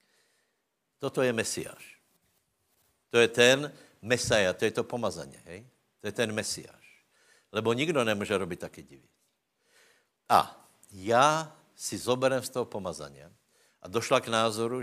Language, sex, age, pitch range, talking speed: Slovak, male, 60-79, 95-120 Hz, 135 wpm